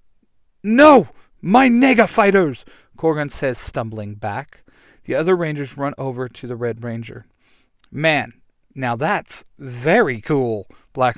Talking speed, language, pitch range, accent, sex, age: 125 wpm, English, 125-175 Hz, American, male, 40-59